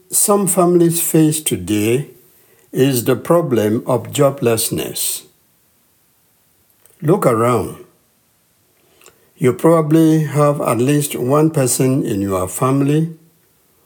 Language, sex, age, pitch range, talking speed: English, male, 60-79, 125-165 Hz, 90 wpm